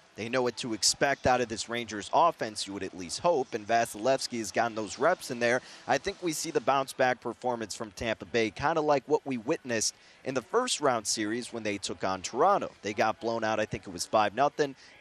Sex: male